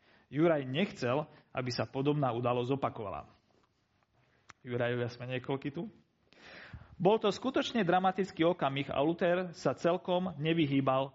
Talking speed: 115 wpm